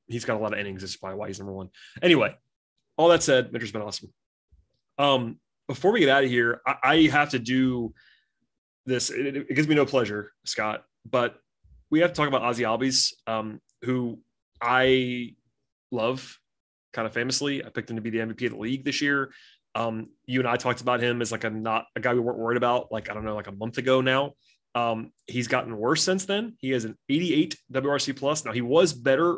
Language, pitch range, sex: English, 115-135 Hz, male